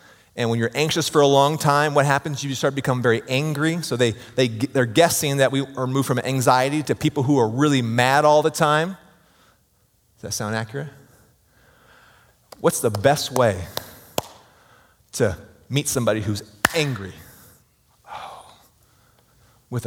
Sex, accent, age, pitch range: male, American, 30-49, 105-140 Hz